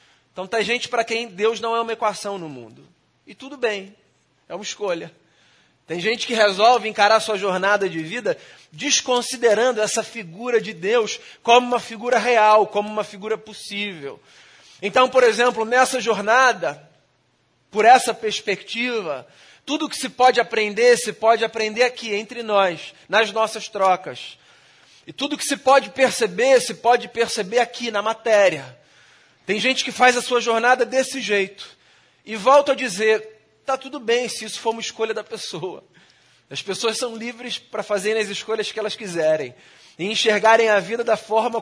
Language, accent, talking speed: Portuguese, Brazilian, 165 wpm